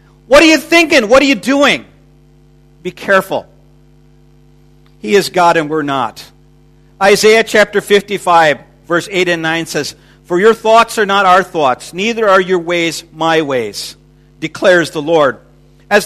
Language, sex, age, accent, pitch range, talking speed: English, male, 50-69, American, 165-235 Hz, 155 wpm